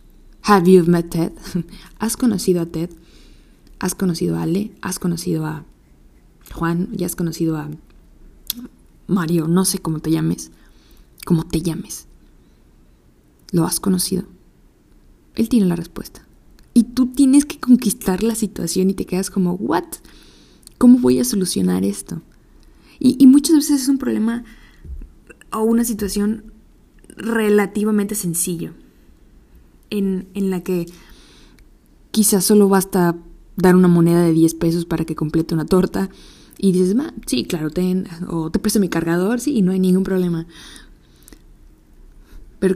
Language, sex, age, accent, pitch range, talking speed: Spanish, female, 20-39, Mexican, 160-195 Hz, 140 wpm